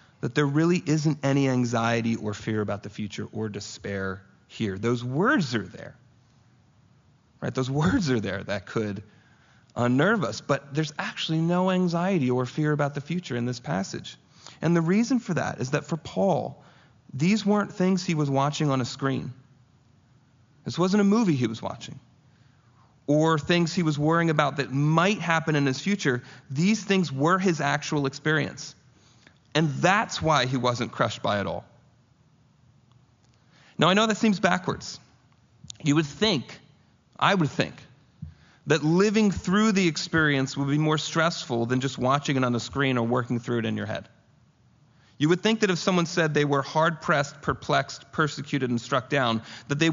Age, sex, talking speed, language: 30-49, male, 175 wpm, English